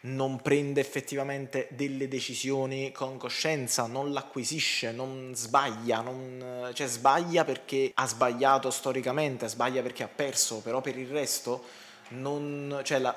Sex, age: male, 20-39